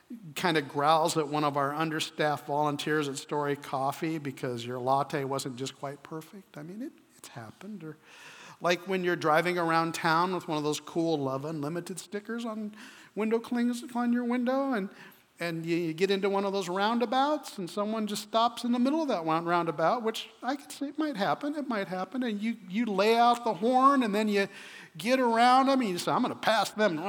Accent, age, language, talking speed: American, 50-69, English, 210 wpm